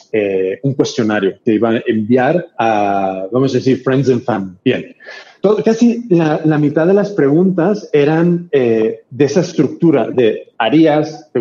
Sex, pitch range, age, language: male, 130-170 Hz, 40-59, Spanish